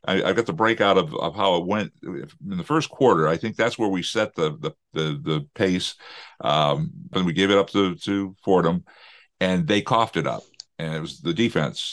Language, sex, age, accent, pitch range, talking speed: English, male, 50-69, American, 90-110 Hz, 220 wpm